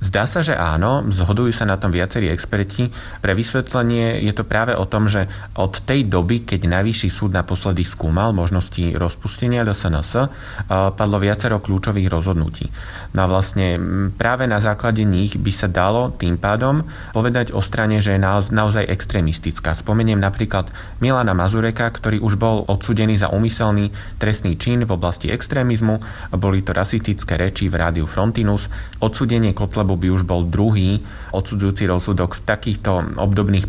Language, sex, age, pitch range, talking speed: Slovak, male, 30-49, 95-110 Hz, 155 wpm